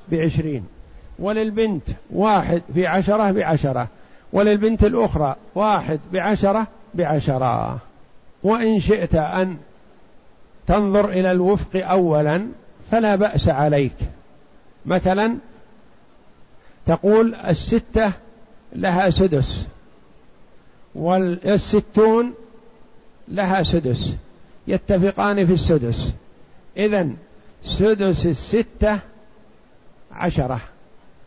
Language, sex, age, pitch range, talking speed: Arabic, male, 60-79, 170-215 Hz, 65 wpm